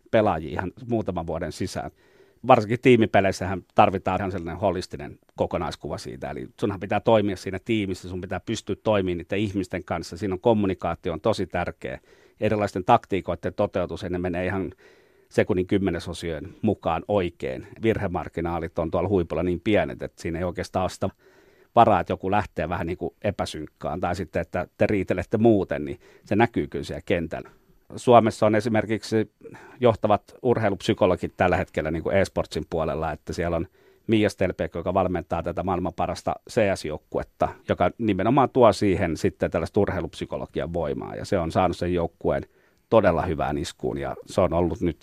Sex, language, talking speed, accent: male, Finnish, 155 wpm, native